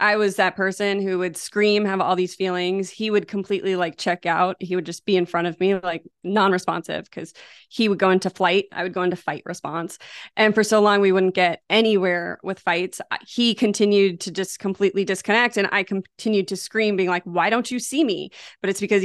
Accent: American